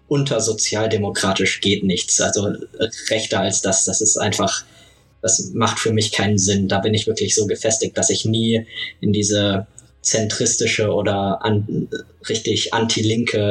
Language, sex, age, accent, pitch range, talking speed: German, male, 20-39, German, 100-115 Hz, 145 wpm